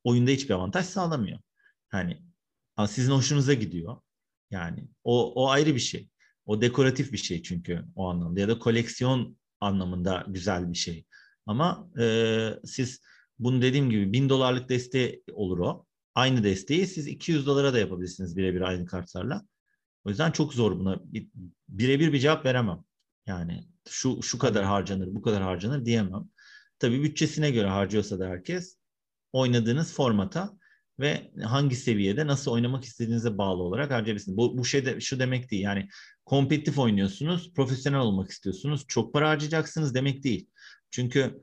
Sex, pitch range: male, 100-140 Hz